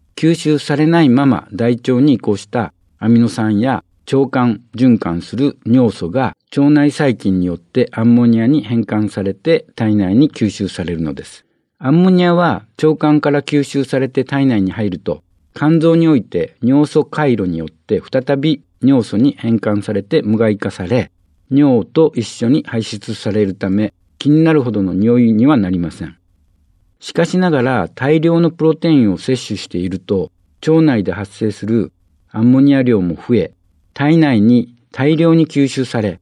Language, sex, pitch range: Japanese, male, 100-140 Hz